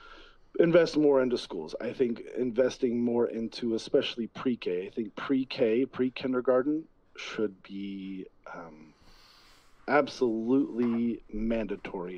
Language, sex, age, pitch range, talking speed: English, male, 40-59, 105-150 Hz, 100 wpm